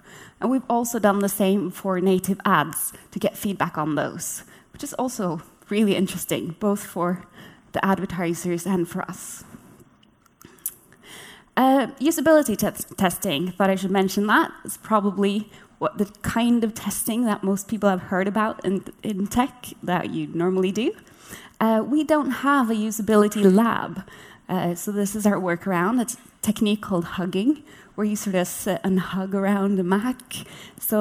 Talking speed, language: 155 wpm, English